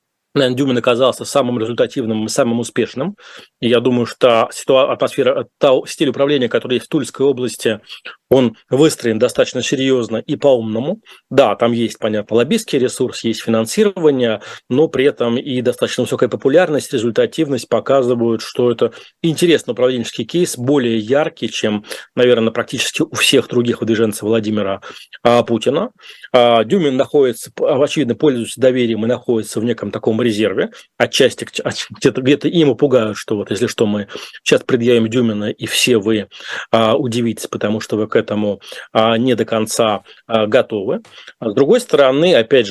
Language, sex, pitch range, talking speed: Russian, male, 115-140 Hz, 140 wpm